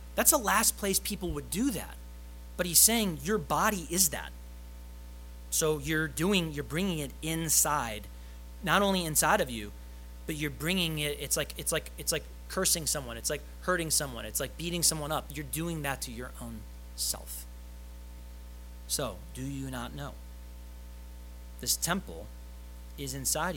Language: English